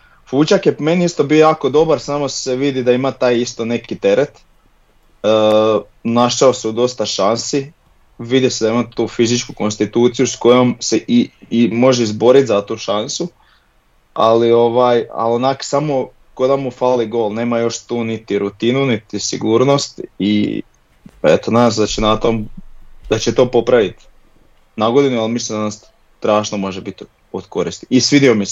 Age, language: 30-49, Croatian